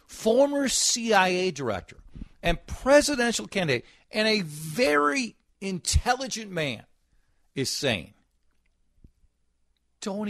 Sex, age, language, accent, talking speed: male, 50-69, English, American, 80 wpm